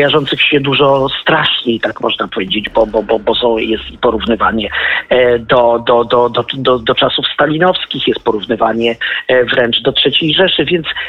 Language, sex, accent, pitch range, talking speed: Polish, male, native, 135-160 Hz, 140 wpm